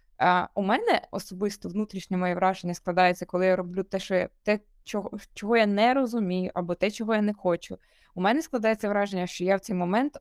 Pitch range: 190-235 Hz